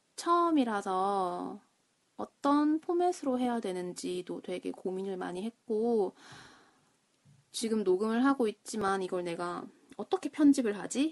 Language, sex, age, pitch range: Korean, female, 20-39, 185-245 Hz